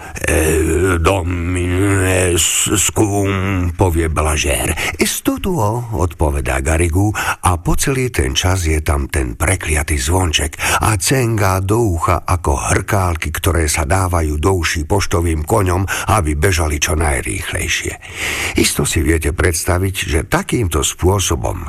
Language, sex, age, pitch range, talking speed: Slovak, male, 60-79, 80-105 Hz, 110 wpm